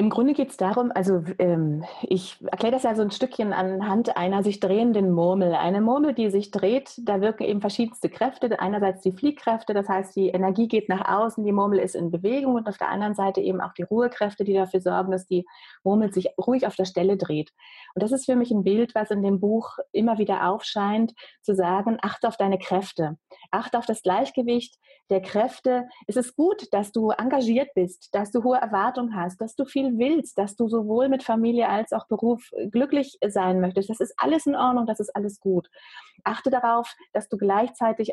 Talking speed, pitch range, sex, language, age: 210 wpm, 195-240 Hz, female, German, 30-49